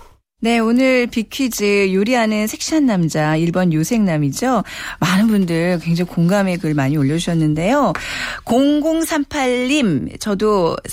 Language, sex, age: Korean, female, 40-59